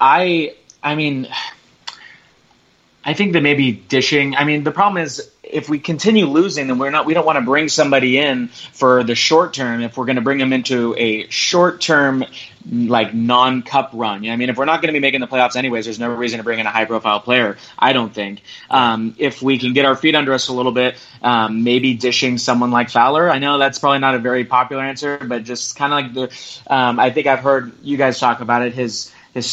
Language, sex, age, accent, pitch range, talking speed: English, male, 20-39, American, 115-135 Hz, 230 wpm